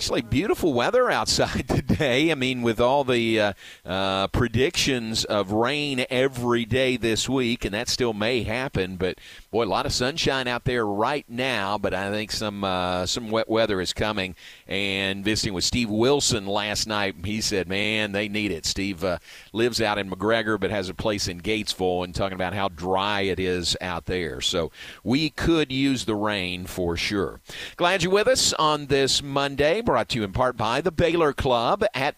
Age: 40-59